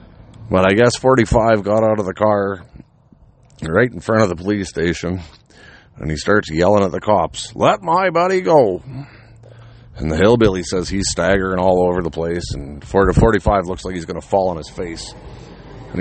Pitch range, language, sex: 105-155 Hz, English, male